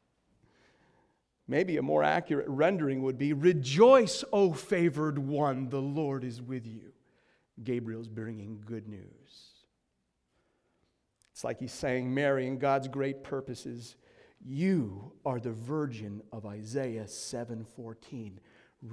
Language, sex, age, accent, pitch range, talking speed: English, male, 40-59, American, 115-155 Hz, 115 wpm